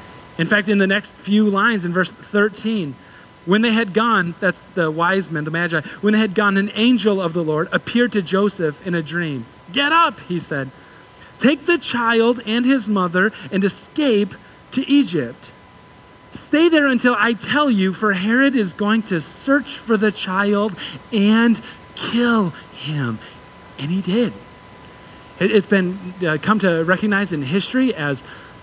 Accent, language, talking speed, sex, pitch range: American, English, 165 wpm, male, 180-230 Hz